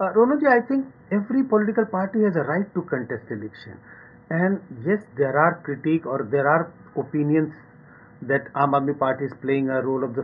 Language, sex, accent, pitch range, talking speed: English, male, Indian, 135-185 Hz, 180 wpm